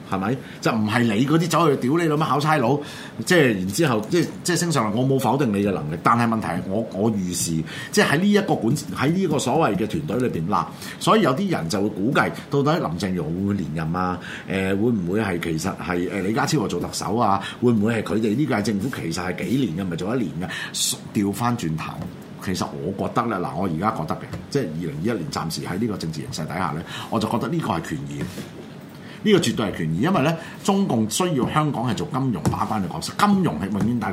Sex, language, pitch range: male, Chinese, 100-160 Hz